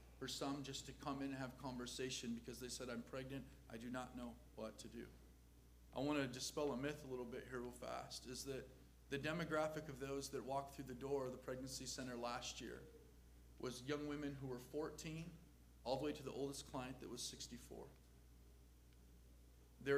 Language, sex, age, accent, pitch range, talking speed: English, male, 40-59, American, 125-145 Hz, 200 wpm